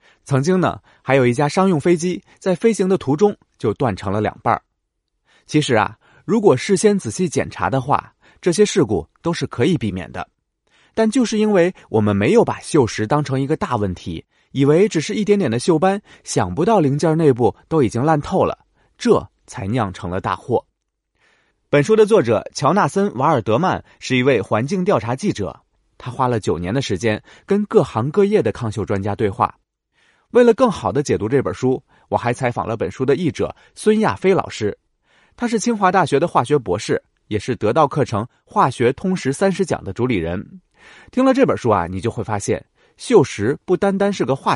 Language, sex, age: Chinese, male, 30-49